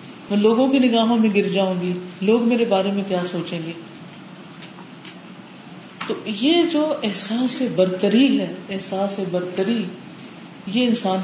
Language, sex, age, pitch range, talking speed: Urdu, female, 40-59, 185-235 Hz, 135 wpm